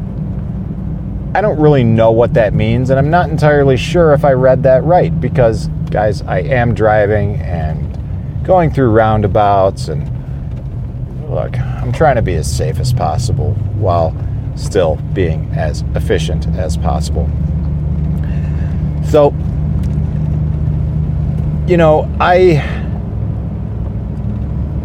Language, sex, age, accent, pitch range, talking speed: English, male, 40-59, American, 80-125 Hz, 115 wpm